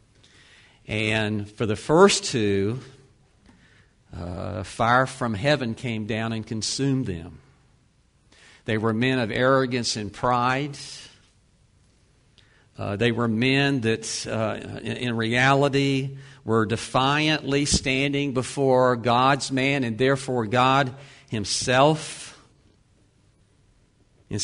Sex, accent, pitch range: male, American, 110-140 Hz